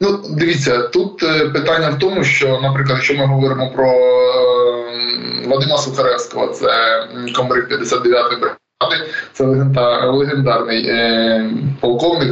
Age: 20-39